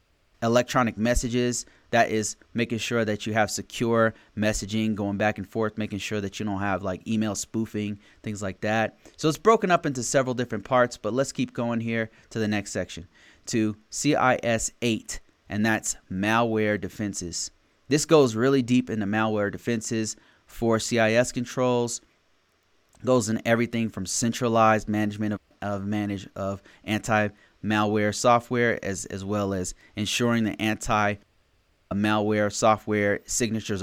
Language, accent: English, American